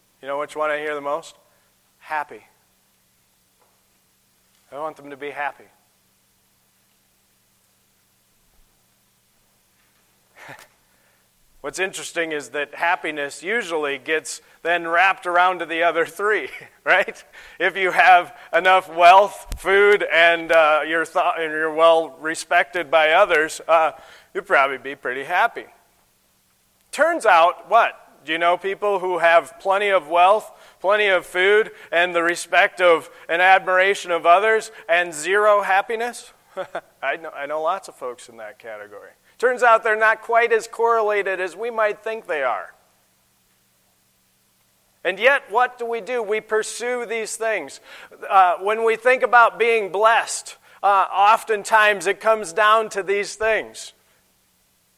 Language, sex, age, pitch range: English, male, 40-59, 150-215 Hz